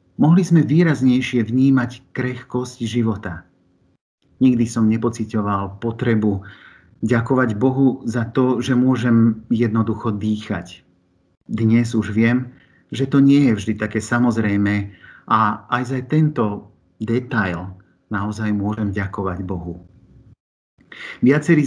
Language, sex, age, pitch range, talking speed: Slovak, male, 50-69, 100-125 Hz, 105 wpm